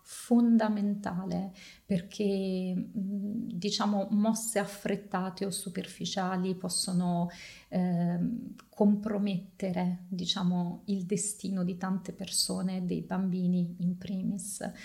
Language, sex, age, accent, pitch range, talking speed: Italian, female, 30-49, native, 185-205 Hz, 80 wpm